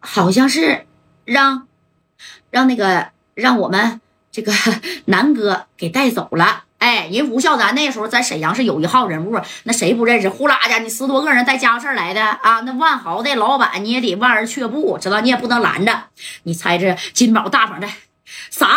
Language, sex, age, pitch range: Chinese, female, 30-49, 205-275 Hz